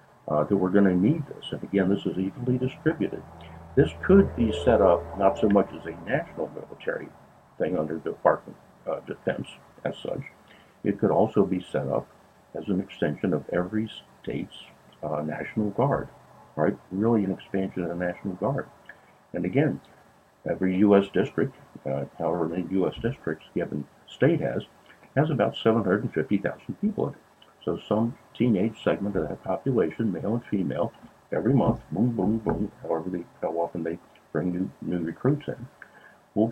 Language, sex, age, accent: English, male, 60-79, American